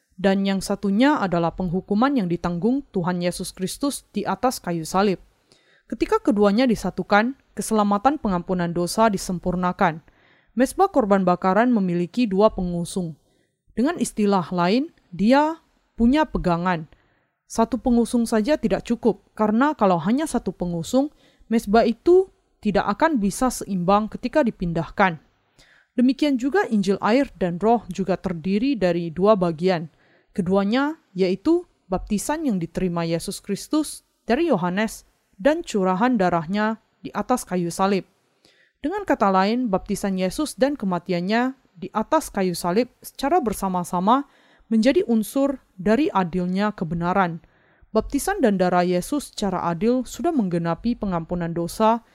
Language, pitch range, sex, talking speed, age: Indonesian, 180-245 Hz, female, 120 wpm, 20-39